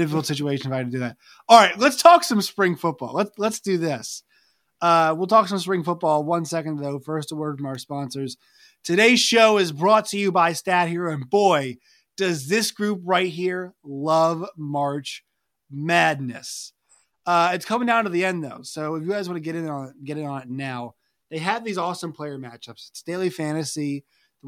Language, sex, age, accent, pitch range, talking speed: English, male, 20-39, American, 140-180 Hz, 200 wpm